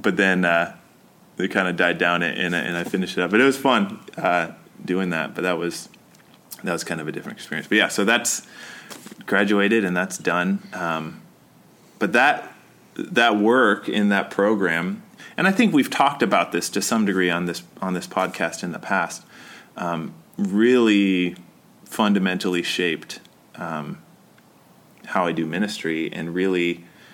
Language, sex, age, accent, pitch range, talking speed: English, male, 20-39, American, 85-105 Hz, 170 wpm